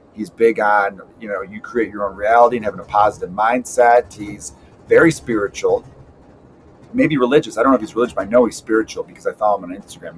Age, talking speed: 40-59, 220 wpm